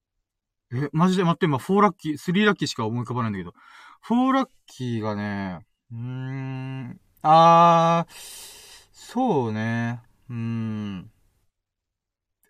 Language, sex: Japanese, male